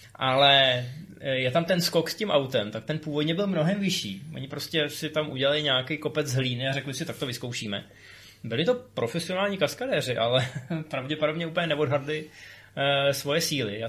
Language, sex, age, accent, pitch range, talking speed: Czech, male, 20-39, native, 125-165 Hz, 175 wpm